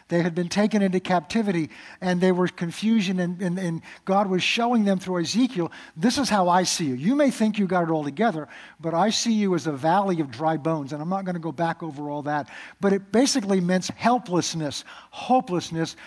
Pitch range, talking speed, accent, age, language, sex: 170-205 Hz, 220 wpm, American, 50-69, English, male